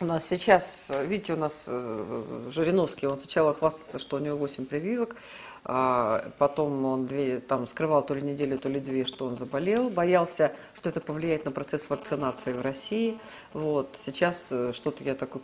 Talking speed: 170 wpm